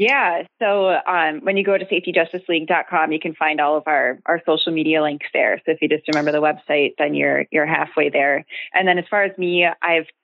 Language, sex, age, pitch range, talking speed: English, female, 20-39, 150-180 Hz, 230 wpm